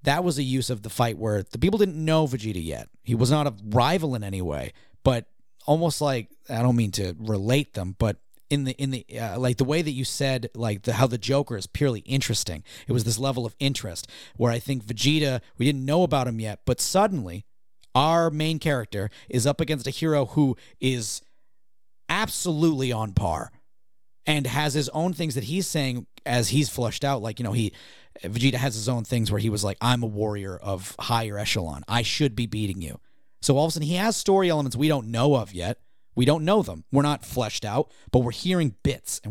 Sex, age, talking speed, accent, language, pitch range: male, 30-49, 220 wpm, American, English, 110-145 Hz